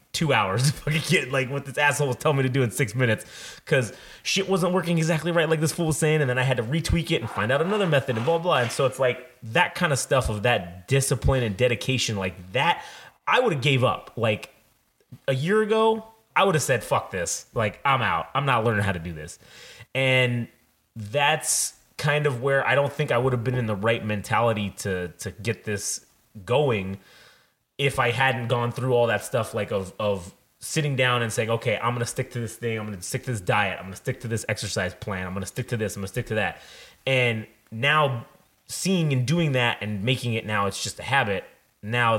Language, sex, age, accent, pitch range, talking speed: English, male, 30-49, American, 105-135 Hz, 240 wpm